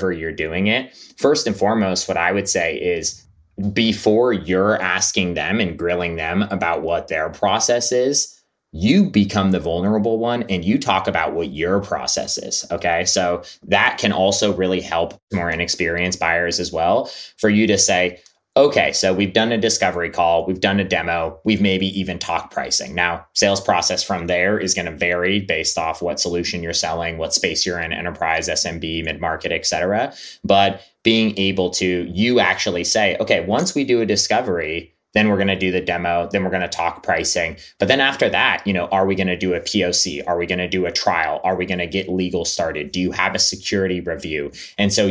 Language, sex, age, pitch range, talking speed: English, male, 20-39, 90-105 Hz, 205 wpm